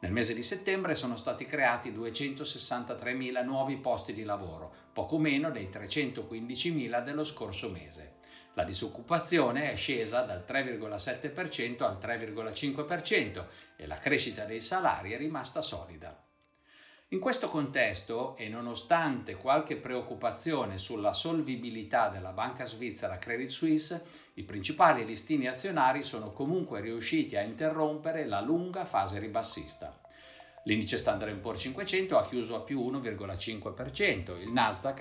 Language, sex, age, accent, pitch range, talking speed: Italian, male, 50-69, native, 105-150 Hz, 125 wpm